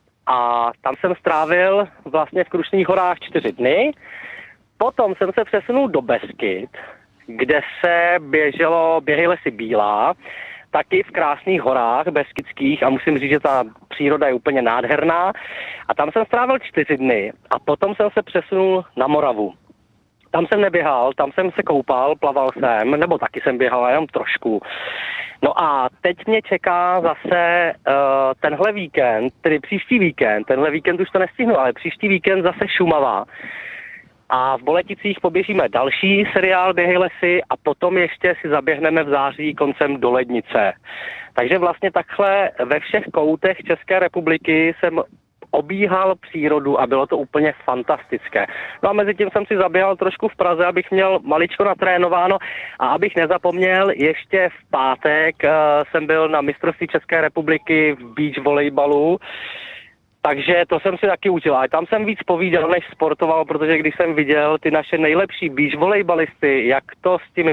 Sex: male